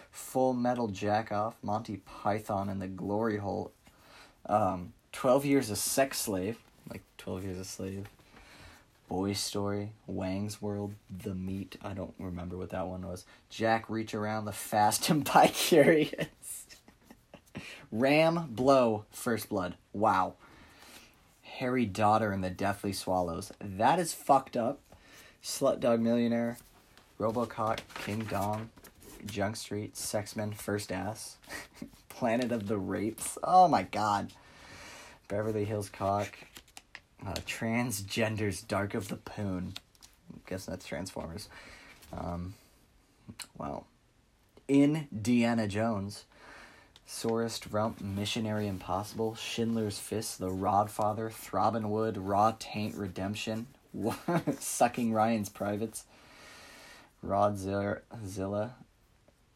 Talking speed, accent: 110 wpm, American